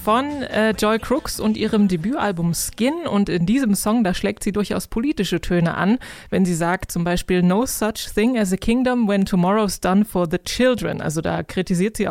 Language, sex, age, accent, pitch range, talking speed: German, female, 20-39, German, 185-225 Hz, 200 wpm